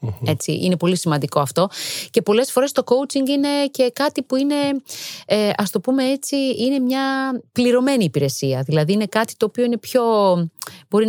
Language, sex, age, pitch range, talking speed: Greek, female, 30-49, 160-225 Hz, 150 wpm